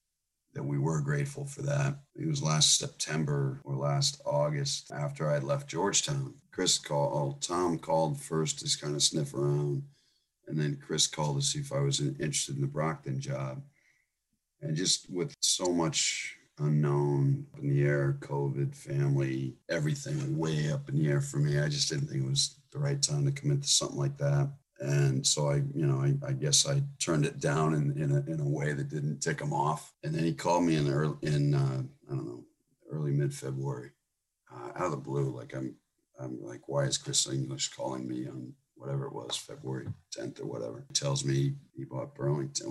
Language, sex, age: English, male, 40-59